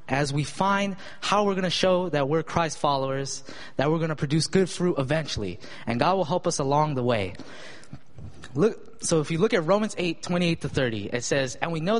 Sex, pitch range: male, 135-180 Hz